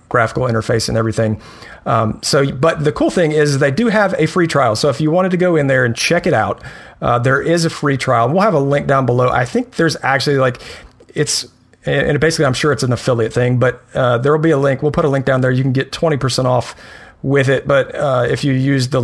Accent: American